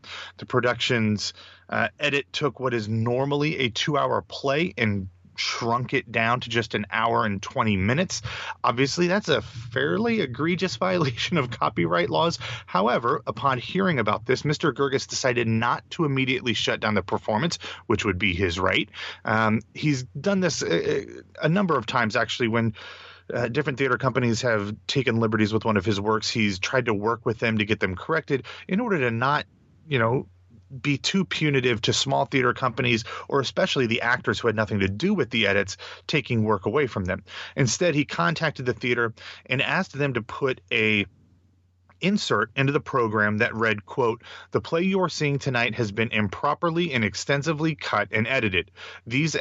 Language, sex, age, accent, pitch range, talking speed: English, male, 30-49, American, 110-140 Hz, 175 wpm